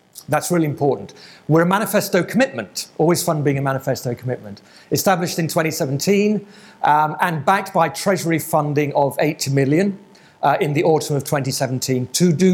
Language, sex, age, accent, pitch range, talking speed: English, male, 40-59, British, 135-180 Hz, 160 wpm